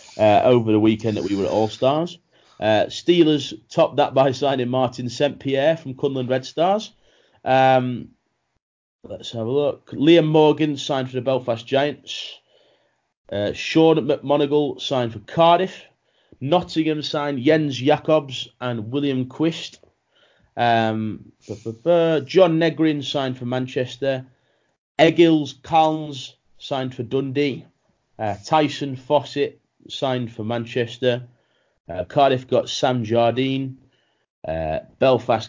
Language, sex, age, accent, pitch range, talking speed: English, male, 30-49, British, 125-150 Hz, 120 wpm